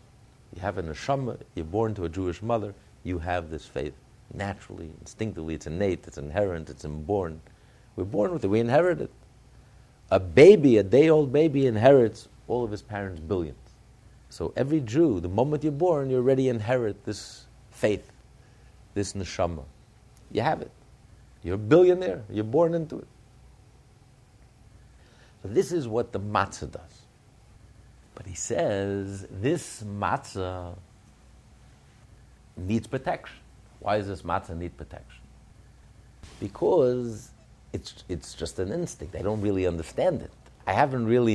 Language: English